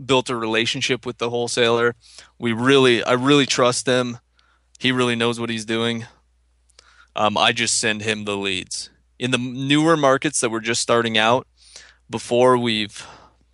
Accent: American